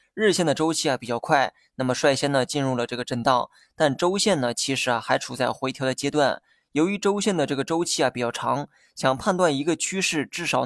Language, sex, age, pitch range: Chinese, male, 20-39, 130-155 Hz